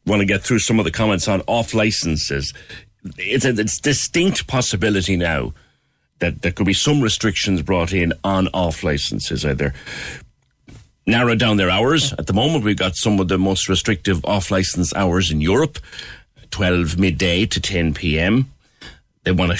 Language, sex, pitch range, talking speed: English, male, 90-115 Hz, 170 wpm